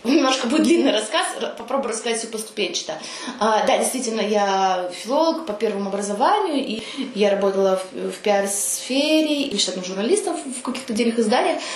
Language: Russian